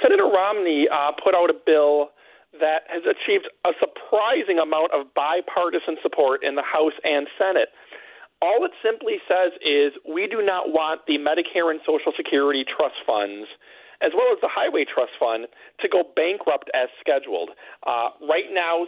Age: 40-59